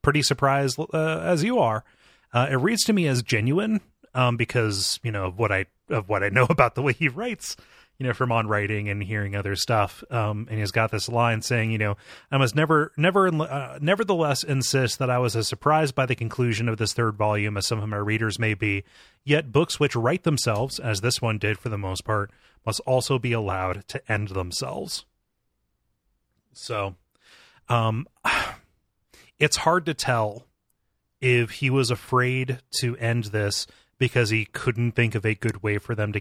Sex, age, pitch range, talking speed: male, 30-49, 105-130 Hz, 195 wpm